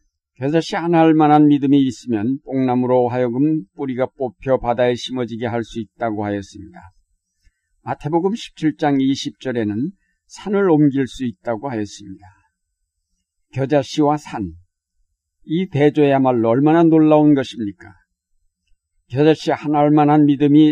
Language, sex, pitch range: Korean, male, 105-145 Hz